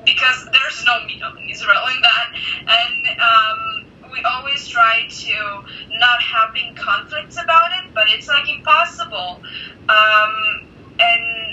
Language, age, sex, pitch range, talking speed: English, 20-39, female, 220-330 Hz, 135 wpm